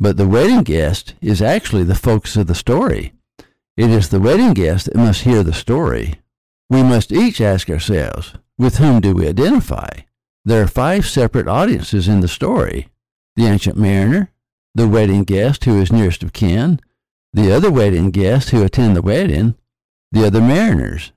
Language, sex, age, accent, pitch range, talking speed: English, male, 60-79, American, 95-120 Hz, 175 wpm